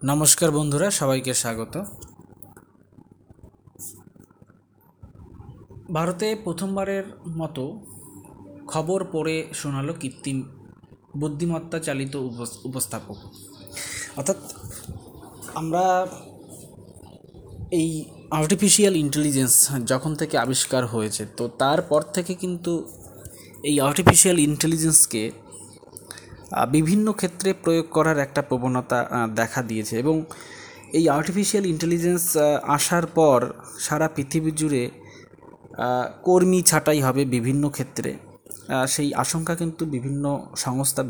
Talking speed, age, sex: 80 wpm, 20-39, male